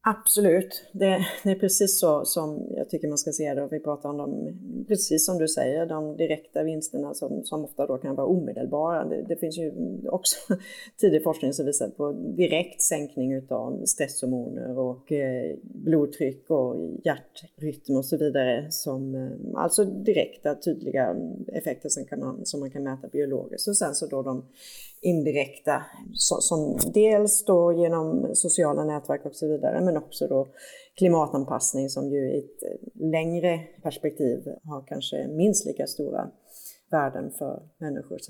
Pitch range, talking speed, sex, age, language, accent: 150-195 Hz, 150 wpm, female, 30-49, Swedish, native